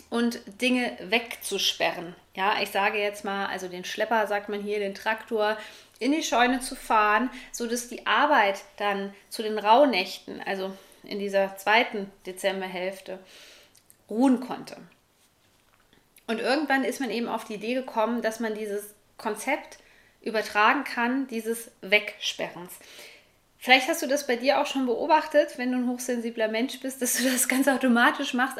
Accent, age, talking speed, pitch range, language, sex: German, 20-39, 155 wpm, 210-250 Hz, German, female